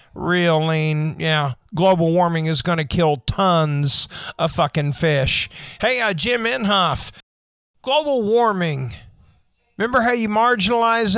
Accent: American